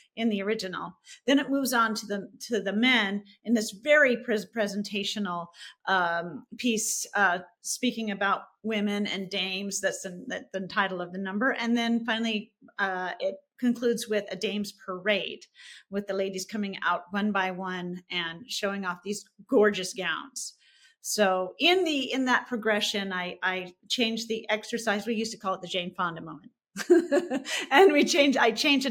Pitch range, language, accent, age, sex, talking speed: 190-235 Hz, English, American, 40-59, female, 165 wpm